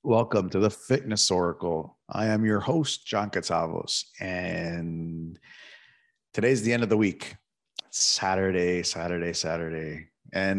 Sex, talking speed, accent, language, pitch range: male, 130 wpm, Canadian, English, 90-115 Hz